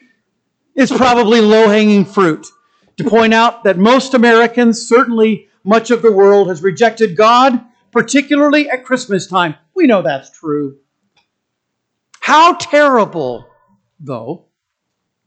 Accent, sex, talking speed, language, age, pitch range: American, male, 120 wpm, English, 50-69, 175-255 Hz